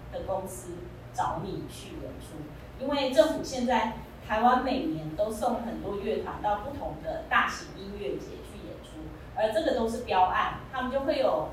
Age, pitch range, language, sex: 30-49, 210-280 Hz, Chinese, female